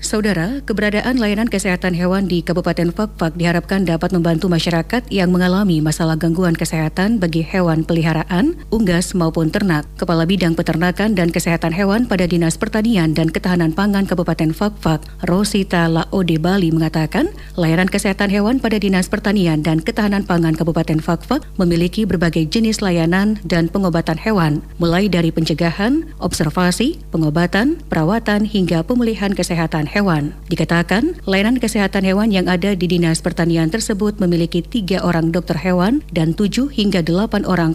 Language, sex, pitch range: Indonesian, female, 165-200 Hz